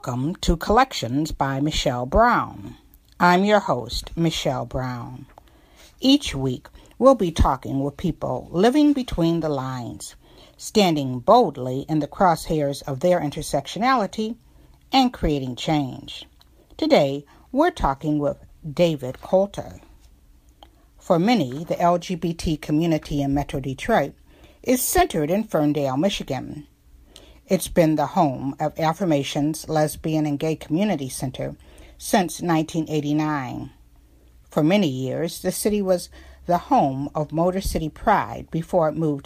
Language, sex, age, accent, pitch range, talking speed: English, female, 60-79, American, 140-185 Hz, 120 wpm